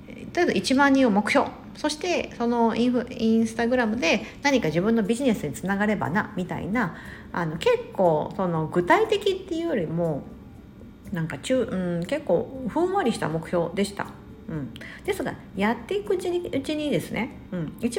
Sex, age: female, 50-69